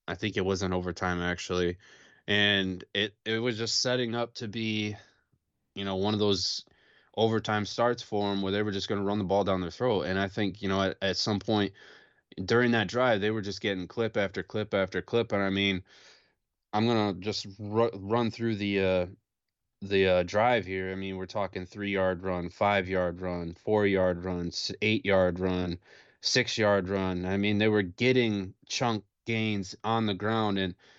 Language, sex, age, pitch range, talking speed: English, male, 20-39, 95-110 Hz, 190 wpm